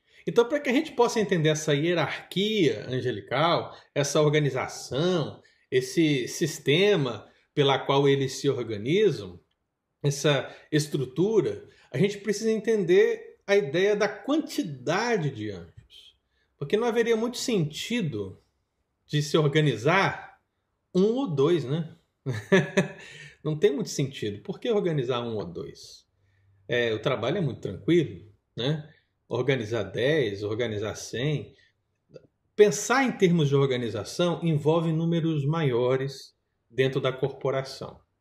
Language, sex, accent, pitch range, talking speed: Portuguese, male, Brazilian, 130-185 Hz, 120 wpm